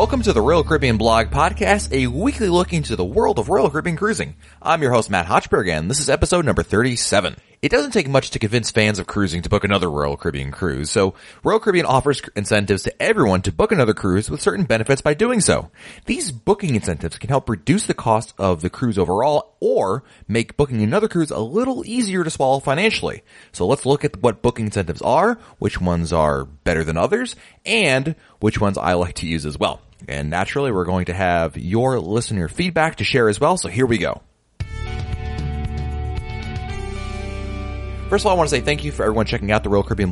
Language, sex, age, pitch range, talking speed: English, male, 30-49, 90-140 Hz, 210 wpm